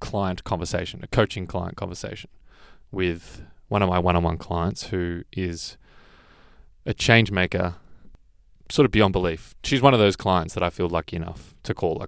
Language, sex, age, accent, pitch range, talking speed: English, male, 20-39, Australian, 85-105 Hz, 170 wpm